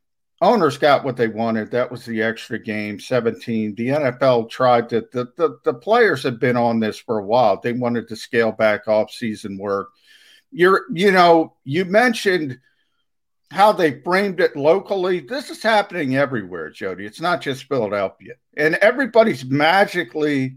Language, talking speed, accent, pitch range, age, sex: English, 160 wpm, American, 120-160 Hz, 50-69, male